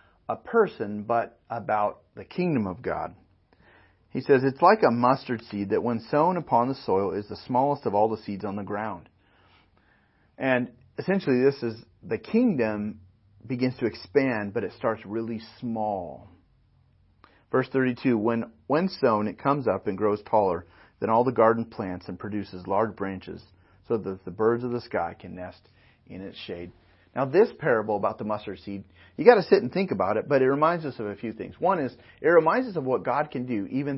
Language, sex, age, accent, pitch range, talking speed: English, male, 40-59, American, 105-150 Hz, 195 wpm